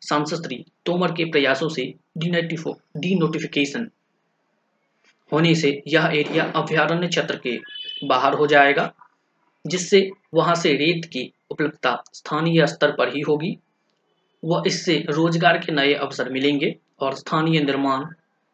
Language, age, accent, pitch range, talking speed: Hindi, 20-39, native, 145-175 Hz, 115 wpm